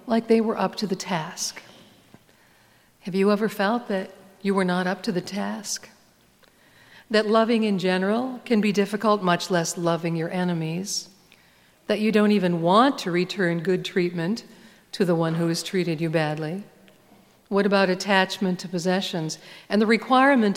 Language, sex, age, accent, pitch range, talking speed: English, female, 50-69, American, 175-225 Hz, 165 wpm